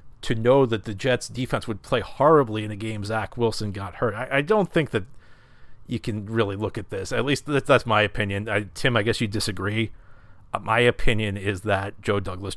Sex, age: male, 40-59